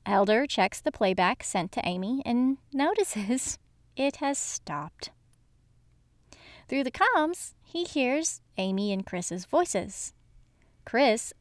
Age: 30-49